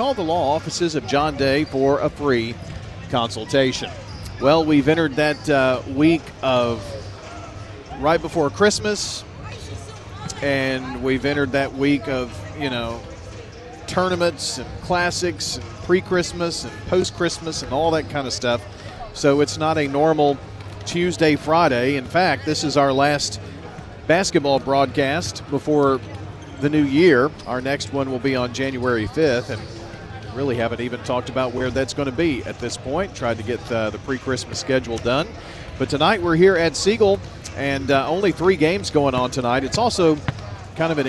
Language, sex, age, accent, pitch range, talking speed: English, male, 40-59, American, 115-150 Hz, 160 wpm